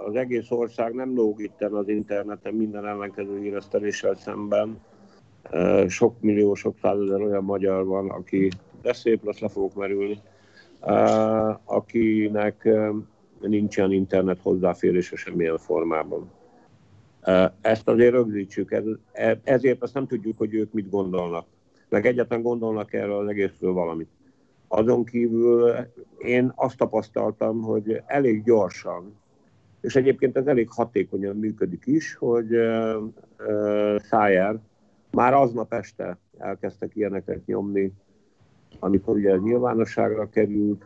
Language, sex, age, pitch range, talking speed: Hungarian, male, 50-69, 100-115 Hz, 115 wpm